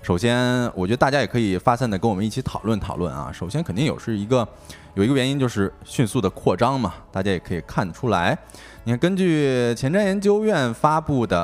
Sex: male